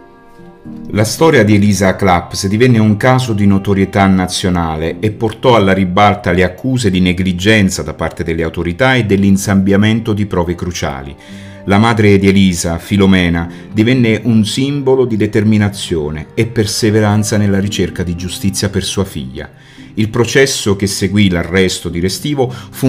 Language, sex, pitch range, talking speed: Italian, male, 90-110 Hz, 145 wpm